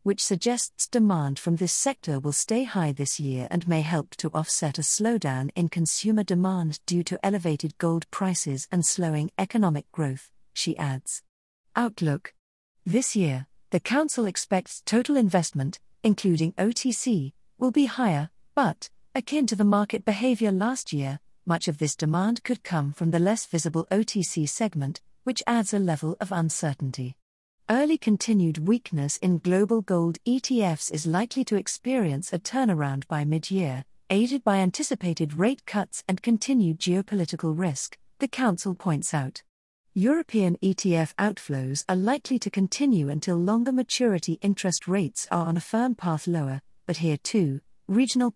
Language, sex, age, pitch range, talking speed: English, female, 50-69, 160-220 Hz, 150 wpm